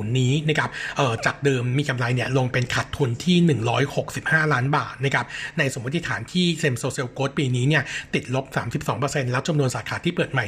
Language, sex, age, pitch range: Thai, male, 60-79, 130-155 Hz